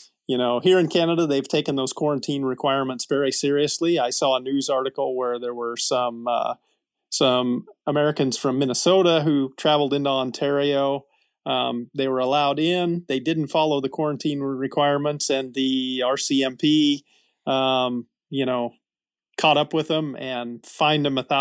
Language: English